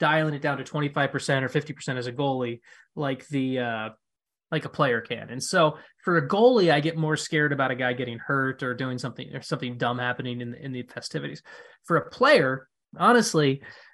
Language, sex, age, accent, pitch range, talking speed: English, male, 20-39, American, 140-170 Hz, 200 wpm